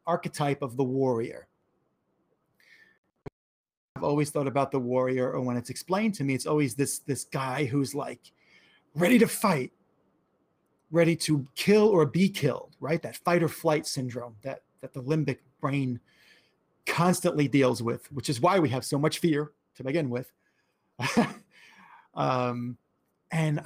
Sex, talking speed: male, 150 wpm